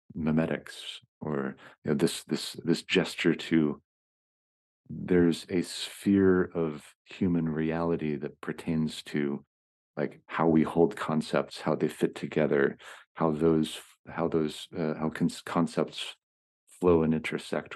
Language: English